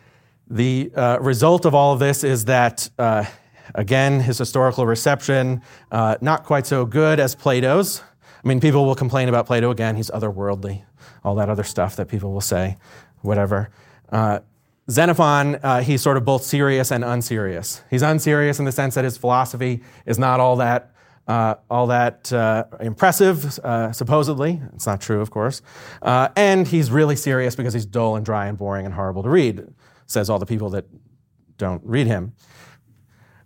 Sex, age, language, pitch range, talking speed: male, 30-49, English, 110-140 Hz, 180 wpm